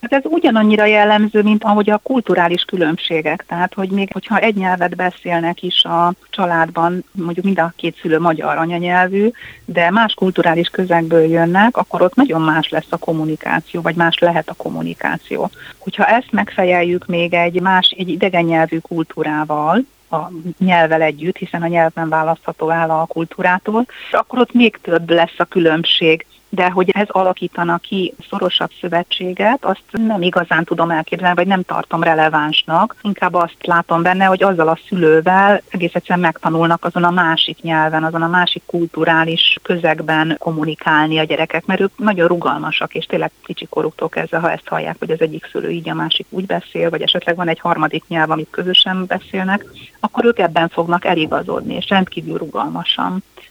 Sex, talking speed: female, 165 wpm